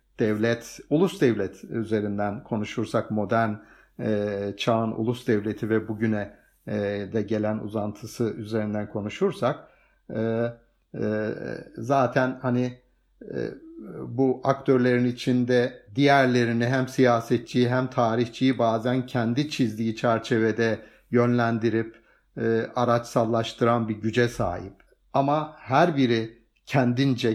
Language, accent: Turkish, native